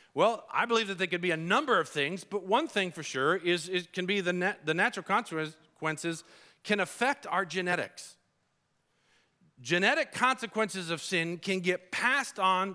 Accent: American